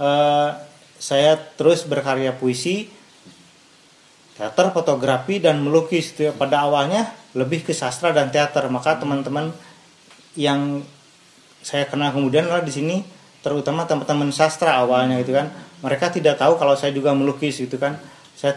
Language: Indonesian